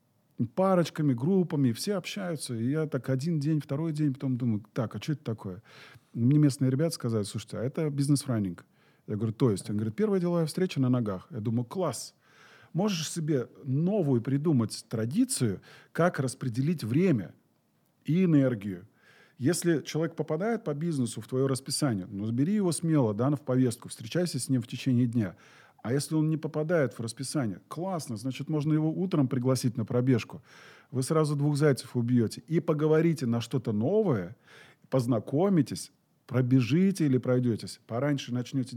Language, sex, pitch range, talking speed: Russian, male, 120-155 Hz, 160 wpm